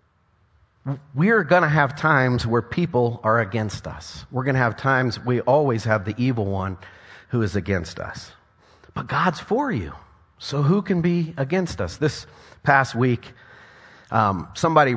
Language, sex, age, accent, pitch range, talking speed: English, male, 30-49, American, 100-145 Hz, 160 wpm